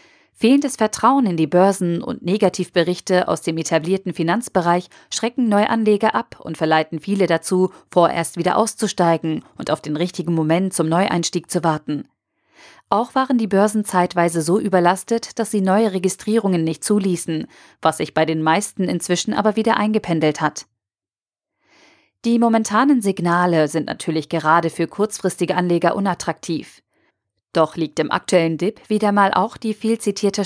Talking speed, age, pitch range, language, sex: 145 wpm, 40-59, 165-215 Hz, German, female